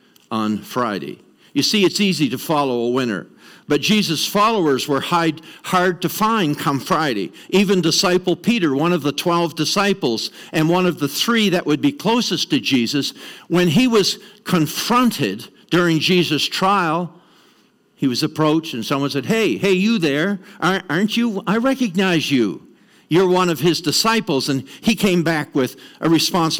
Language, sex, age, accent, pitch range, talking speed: English, male, 60-79, American, 145-190 Hz, 160 wpm